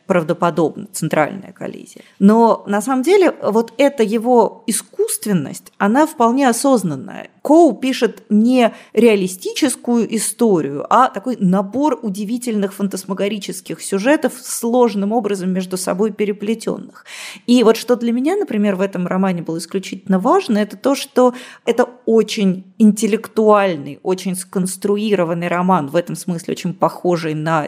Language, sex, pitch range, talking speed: Russian, female, 185-230 Hz, 125 wpm